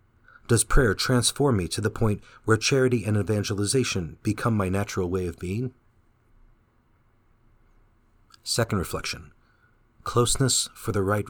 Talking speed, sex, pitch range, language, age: 120 wpm, male, 105-120 Hz, English, 40-59